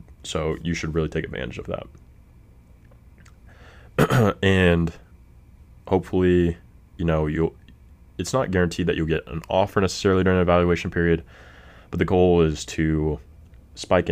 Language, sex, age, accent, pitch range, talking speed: English, male, 20-39, American, 75-85 Hz, 135 wpm